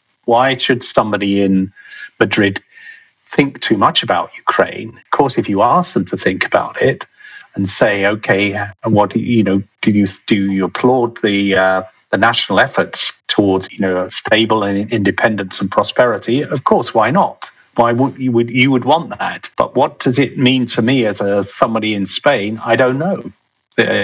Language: English